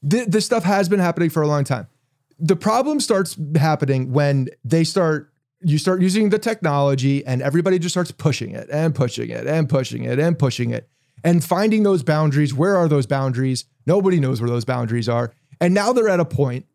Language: English